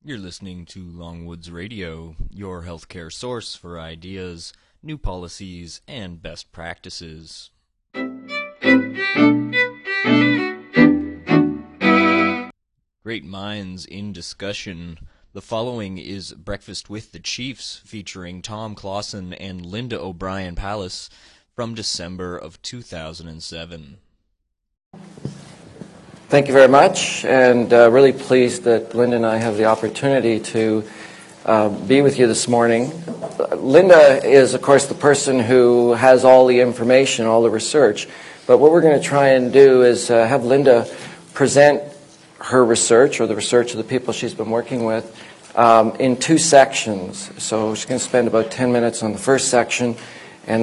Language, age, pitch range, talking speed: English, 30-49, 95-130 Hz, 135 wpm